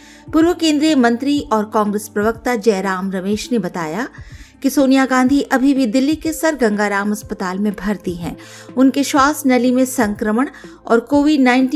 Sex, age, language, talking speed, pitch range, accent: female, 50-69, Hindi, 155 wpm, 210-265 Hz, native